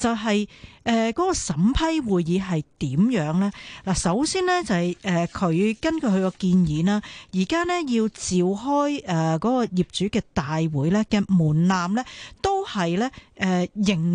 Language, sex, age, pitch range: Chinese, female, 40-59, 170-225 Hz